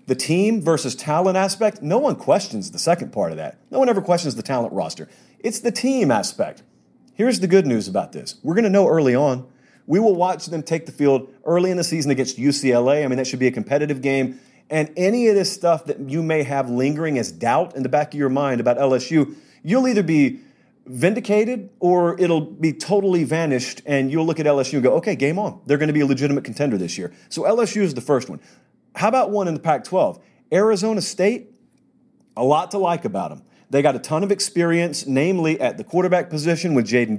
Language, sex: English, male